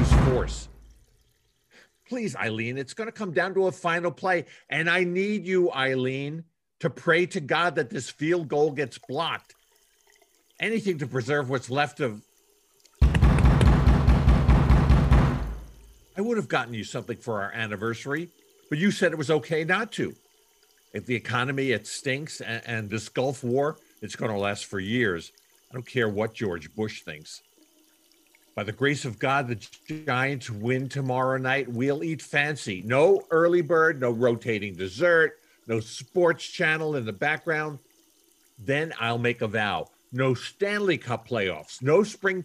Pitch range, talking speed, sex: 120-180 Hz, 155 wpm, male